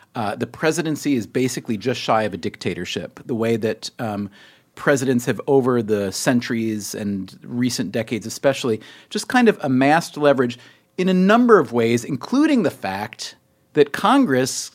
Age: 40-59